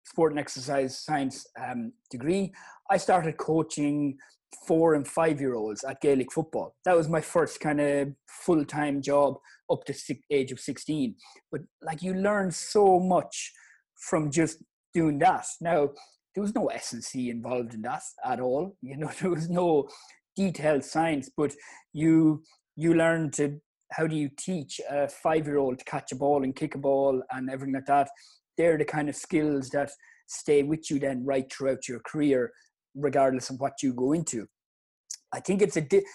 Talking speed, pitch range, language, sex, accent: 170 wpm, 135-165 Hz, English, male, Irish